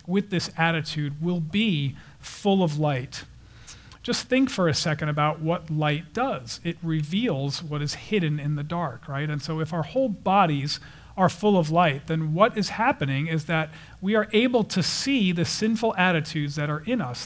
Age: 40-59